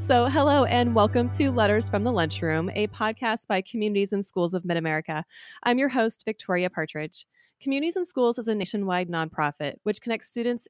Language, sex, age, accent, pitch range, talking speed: English, female, 30-49, American, 175-240 Hz, 180 wpm